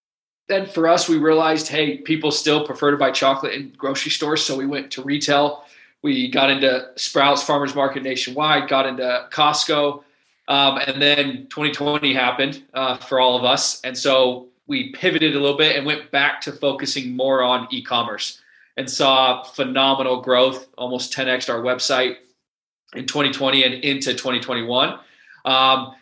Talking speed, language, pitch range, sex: 155 wpm, English, 125-145 Hz, male